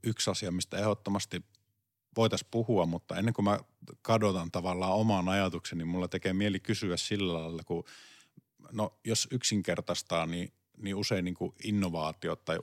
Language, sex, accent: Finnish, male, native